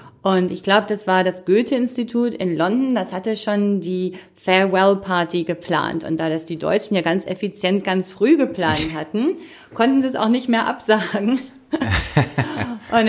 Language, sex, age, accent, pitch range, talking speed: German, female, 30-49, German, 170-235 Hz, 160 wpm